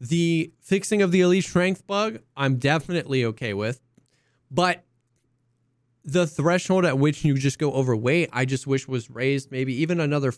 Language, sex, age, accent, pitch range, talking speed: English, male, 20-39, American, 130-175 Hz, 160 wpm